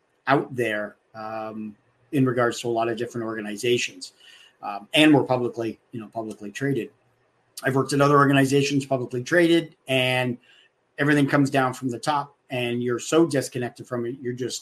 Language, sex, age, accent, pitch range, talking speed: English, male, 50-69, American, 120-135 Hz, 170 wpm